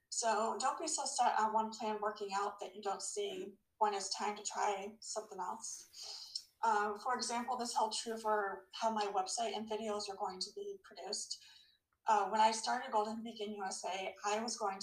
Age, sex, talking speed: 20-39, female, 195 wpm